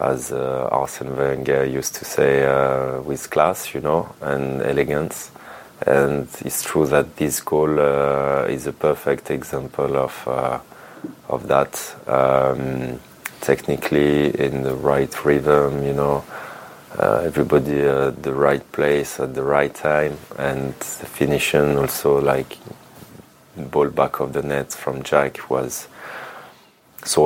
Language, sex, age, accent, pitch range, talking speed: English, male, 30-49, French, 65-75 Hz, 135 wpm